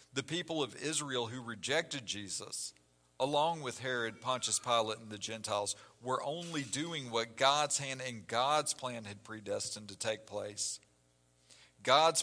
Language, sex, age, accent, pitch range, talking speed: English, male, 50-69, American, 110-145 Hz, 145 wpm